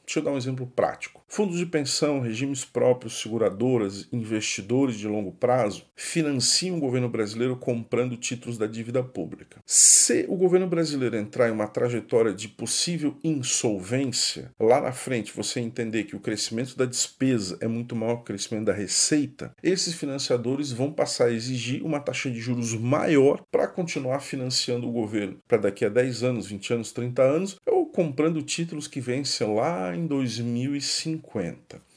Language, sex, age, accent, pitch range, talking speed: Portuguese, male, 50-69, Brazilian, 120-150 Hz, 160 wpm